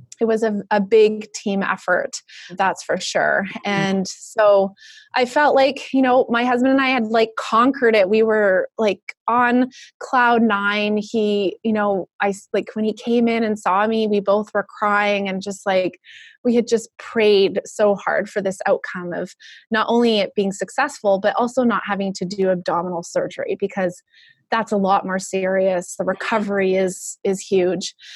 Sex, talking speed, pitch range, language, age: female, 180 wpm, 195-230 Hz, English, 20-39